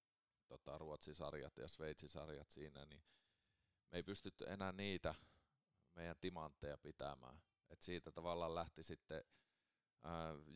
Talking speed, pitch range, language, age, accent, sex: 120 wpm, 75-90 Hz, Finnish, 30-49, native, male